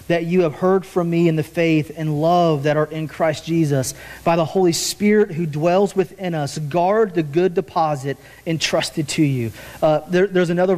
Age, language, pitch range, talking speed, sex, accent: 40-59, English, 155-195 Hz, 195 wpm, male, American